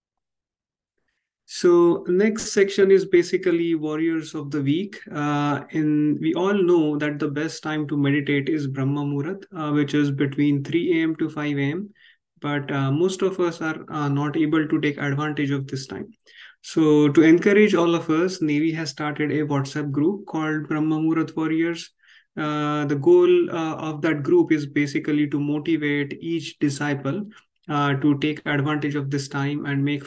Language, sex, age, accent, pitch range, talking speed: English, male, 20-39, Indian, 145-165 Hz, 165 wpm